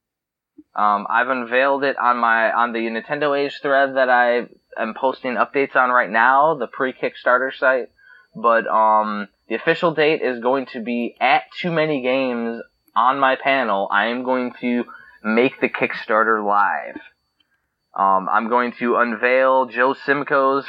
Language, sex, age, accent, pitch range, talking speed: English, male, 20-39, American, 110-140 Hz, 155 wpm